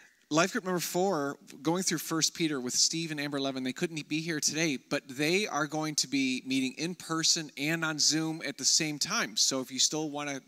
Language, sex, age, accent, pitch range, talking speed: English, male, 30-49, American, 130-160 Hz, 230 wpm